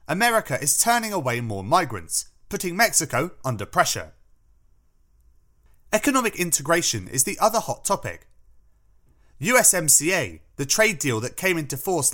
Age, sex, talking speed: 30-49, male, 125 wpm